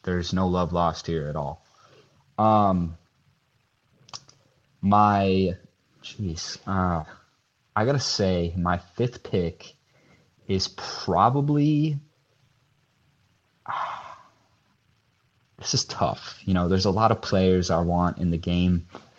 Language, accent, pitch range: English, American, 90-105 Hz